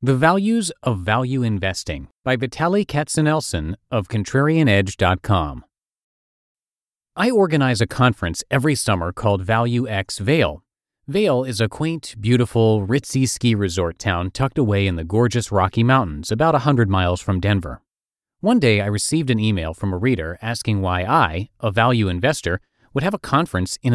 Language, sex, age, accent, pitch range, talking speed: English, male, 30-49, American, 100-135 Hz, 155 wpm